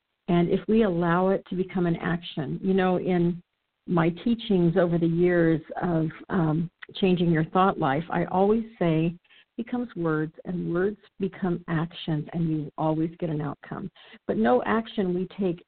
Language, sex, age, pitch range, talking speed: English, female, 50-69, 170-215 Hz, 170 wpm